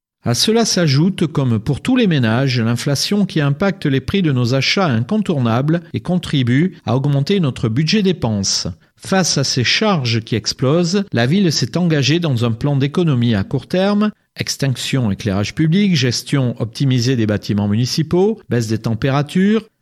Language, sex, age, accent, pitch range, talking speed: French, male, 40-59, French, 120-175 Hz, 155 wpm